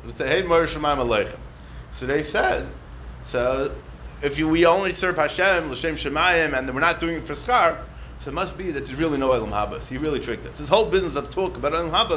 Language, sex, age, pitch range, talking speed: English, male, 30-49, 120-160 Hz, 210 wpm